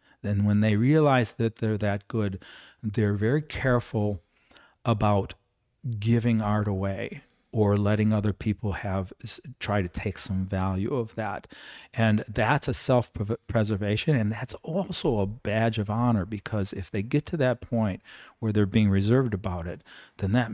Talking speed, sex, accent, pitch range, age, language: 155 wpm, male, American, 105-130 Hz, 40-59, English